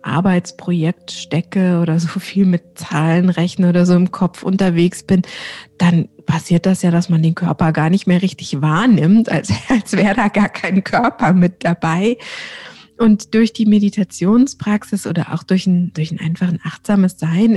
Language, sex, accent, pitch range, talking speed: German, female, German, 175-210 Hz, 165 wpm